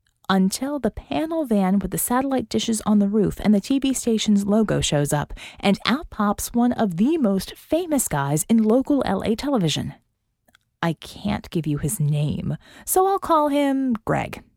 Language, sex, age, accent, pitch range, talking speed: English, female, 30-49, American, 160-235 Hz, 175 wpm